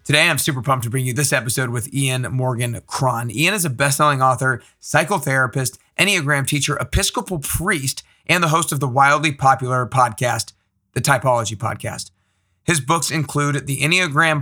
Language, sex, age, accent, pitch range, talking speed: English, male, 30-49, American, 125-150 Hz, 160 wpm